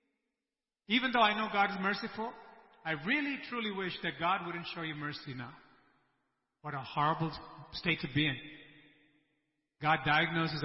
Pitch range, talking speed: 145-170 Hz, 150 wpm